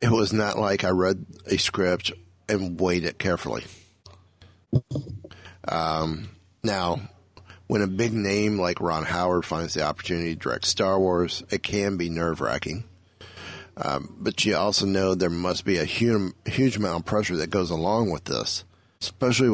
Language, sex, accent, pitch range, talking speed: English, male, American, 85-100 Hz, 155 wpm